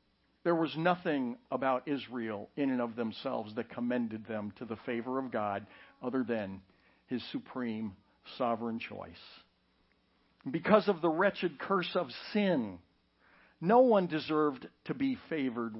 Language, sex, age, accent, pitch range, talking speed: English, male, 60-79, American, 115-165 Hz, 135 wpm